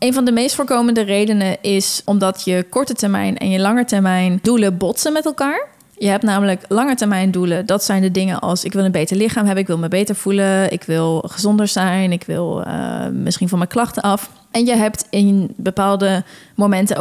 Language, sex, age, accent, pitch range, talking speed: Dutch, female, 20-39, Dutch, 185-220 Hz, 210 wpm